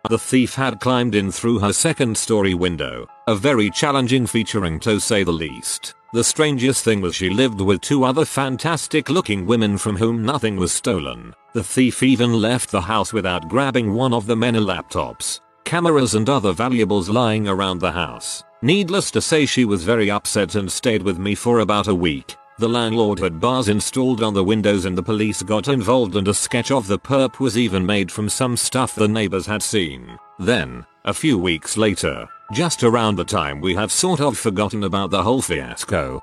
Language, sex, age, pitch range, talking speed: English, male, 40-59, 100-130 Hz, 195 wpm